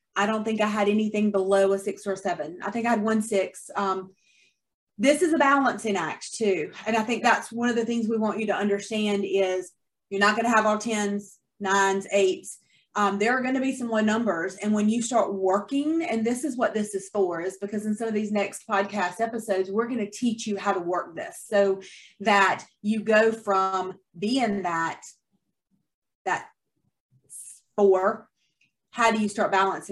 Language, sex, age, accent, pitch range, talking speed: English, female, 30-49, American, 200-245 Hz, 205 wpm